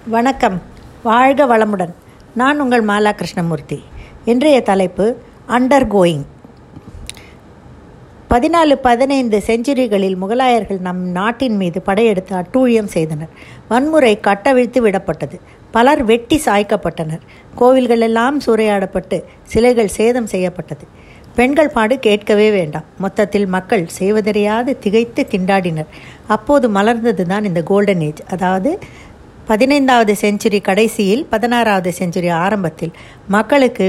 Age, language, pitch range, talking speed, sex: 60-79, Tamil, 185-240 Hz, 95 wpm, female